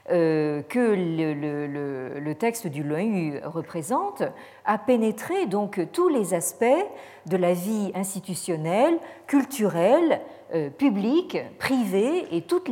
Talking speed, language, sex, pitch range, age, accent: 120 wpm, French, female, 160-245 Hz, 50-69, French